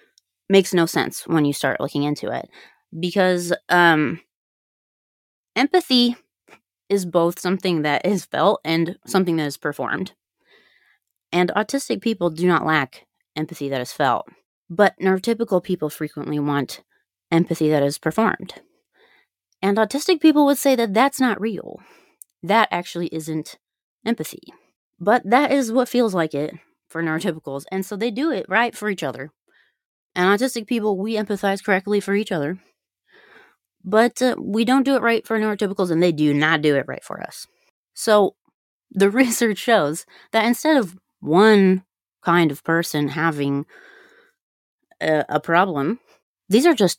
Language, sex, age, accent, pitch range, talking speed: English, female, 30-49, American, 160-235 Hz, 150 wpm